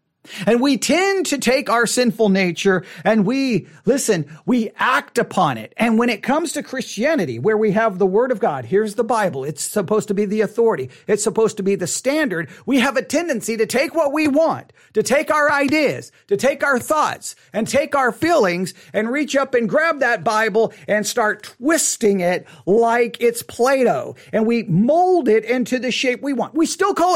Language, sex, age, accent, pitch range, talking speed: English, male, 40-59, American, 210-275 Hz, 200 wpm